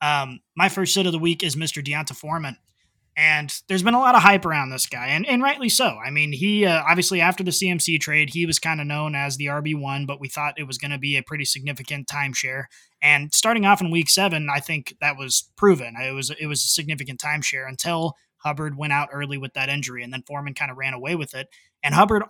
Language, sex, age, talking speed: English, male, 20-39, 250 wpm